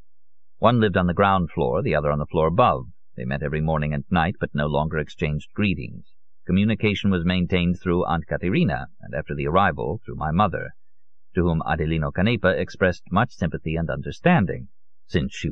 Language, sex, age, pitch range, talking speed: English, male, 50-69, 80-90 Hz, 180 wpm